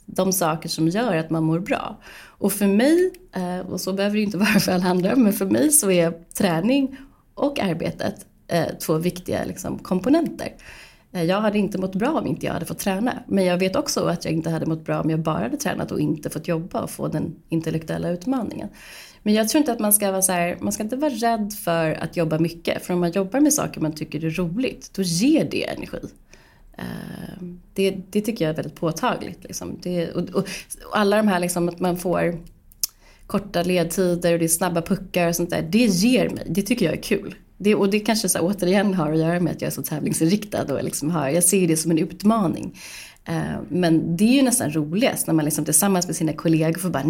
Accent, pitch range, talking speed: native, 165-205 Hz, 220 wpm